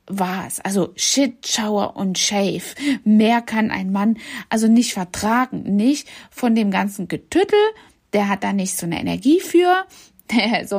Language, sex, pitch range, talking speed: German, female, 195-260 Hz, 155 wpm